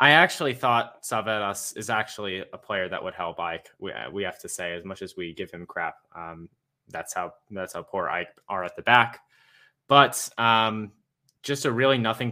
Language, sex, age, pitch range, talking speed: English, male, 20-39, 100-125 Hz, 200 wpm